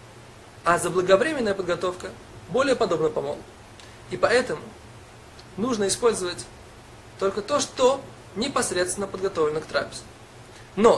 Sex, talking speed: male, 100 wpm